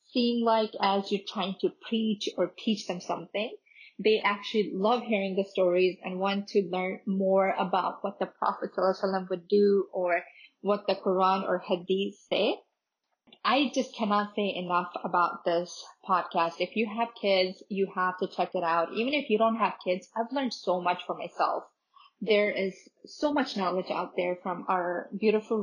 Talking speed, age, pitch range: 180 wpm, 20-39, 185-225 Hz